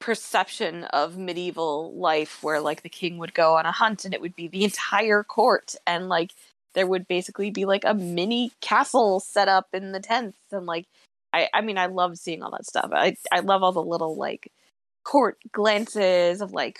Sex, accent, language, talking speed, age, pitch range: female, American, English, 205 wpm, 20-39, 180-280 Hz